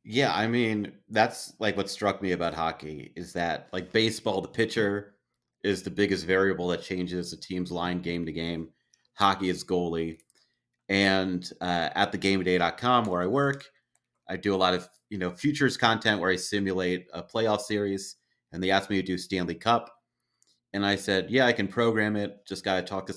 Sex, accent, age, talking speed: male, American, 30-49, 190 wpm